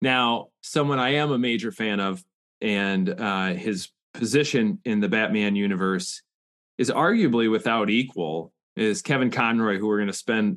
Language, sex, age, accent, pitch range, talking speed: English, male, 30-49, American, 100-135 Hz, 160 wpm